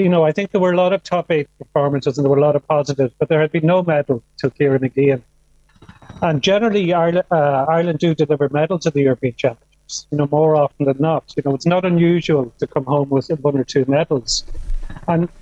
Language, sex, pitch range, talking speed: English, male, 145-170 Hz, 240 wpm